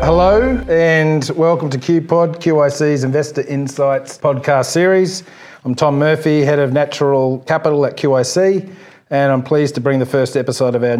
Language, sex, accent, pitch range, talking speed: English, male, Australian, 130-155 Hz, 160 wpm